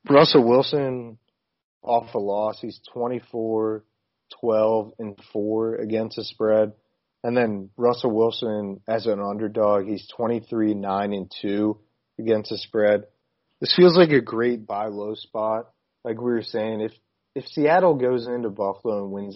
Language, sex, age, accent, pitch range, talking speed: English, male, 30-49, American, 100-115 Hz, 155 wpm